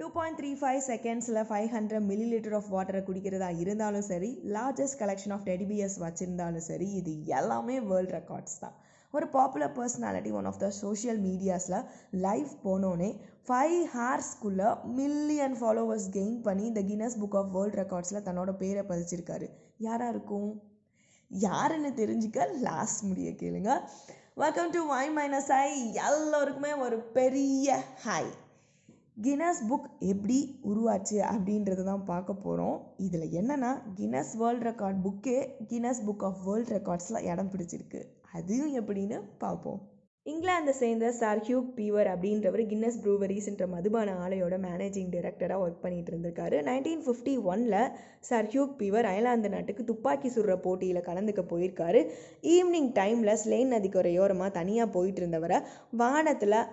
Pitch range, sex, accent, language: 190-245 Hz, female, native, Tamil